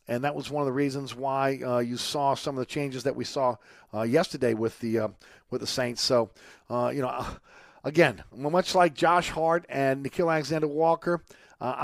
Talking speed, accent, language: 205 wpm, American, English